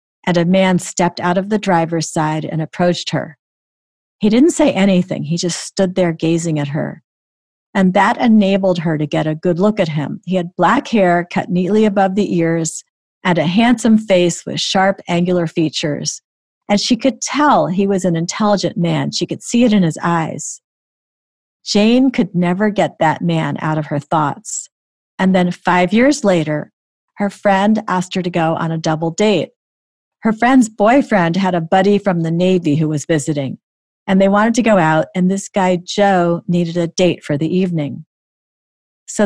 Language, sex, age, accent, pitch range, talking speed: English, female, 40-59, American, 165-205 Hz, 185 wpm